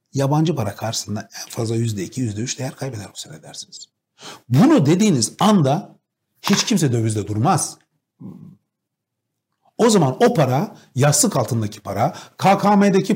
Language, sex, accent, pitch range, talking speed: Turkish, male, native, 125-195 Hz, 120 wpm